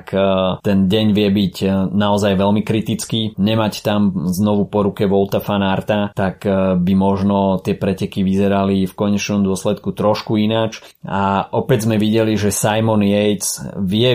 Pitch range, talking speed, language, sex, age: 95-105 Hz, 145 wpm, Slovak, male, 30-49